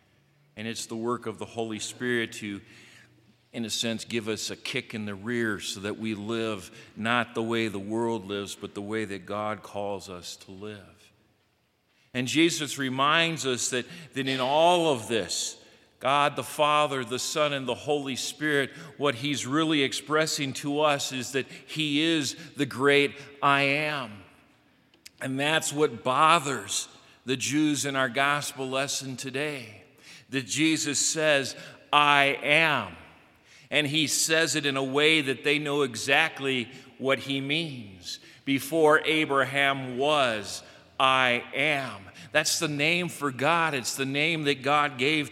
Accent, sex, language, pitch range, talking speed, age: American, male, English, 120-150 Hz, 155 wpm, 50-69